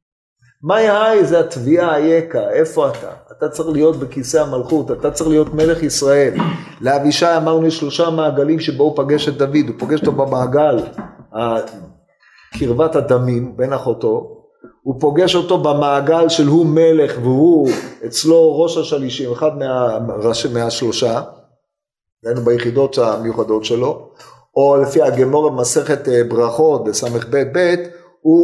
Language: Hebrew